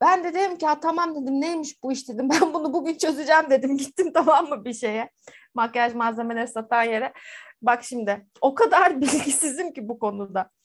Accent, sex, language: native, female, Turkish